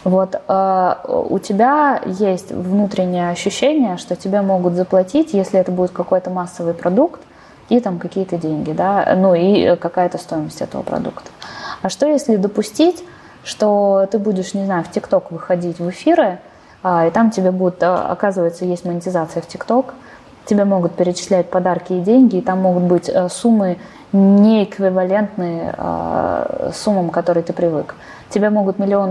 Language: Russian